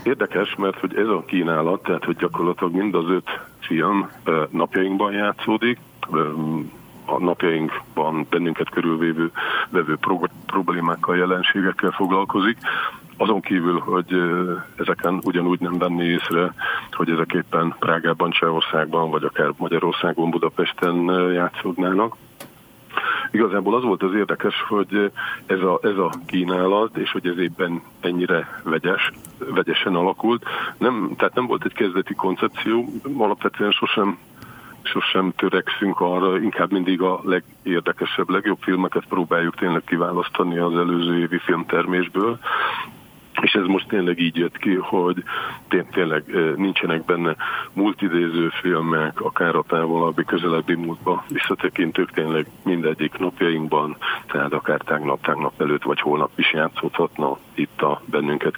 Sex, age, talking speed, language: male, 50-69, 120 wpm, Hungarian